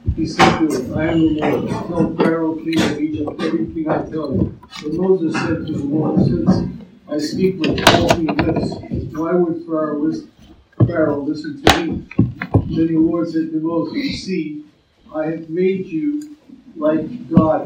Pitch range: 150-180 Hz